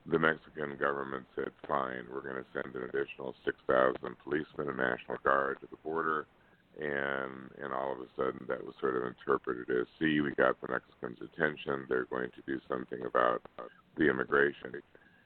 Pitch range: 65-70 Hz